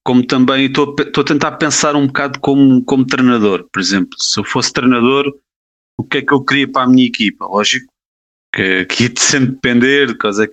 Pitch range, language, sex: 110-135 Hz, Portuguese, male